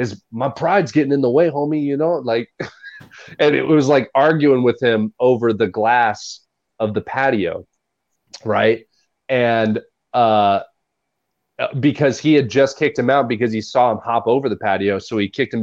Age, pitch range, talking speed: 30-49, 105-140 Hz, 175 wpm